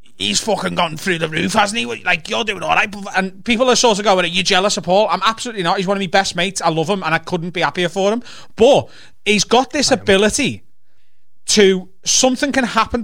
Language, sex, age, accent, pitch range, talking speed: English, male, 30-49, British, 170-225 Hz, 240 wpm